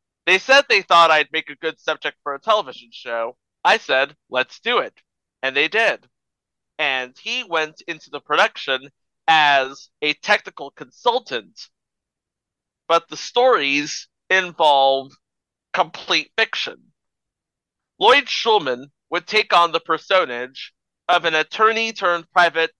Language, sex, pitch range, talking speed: English, male, 145-205 Hz, 125 wpm